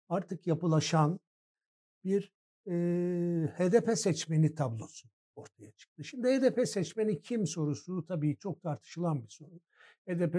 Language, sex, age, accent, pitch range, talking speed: Turkish, male, 60-79, native, 150-180 Hz, 115 wpm